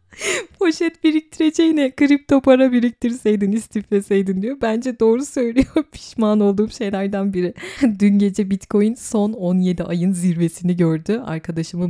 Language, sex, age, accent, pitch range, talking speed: Turkish, female, 30-49, native, 165-220 Hz, 115 wpm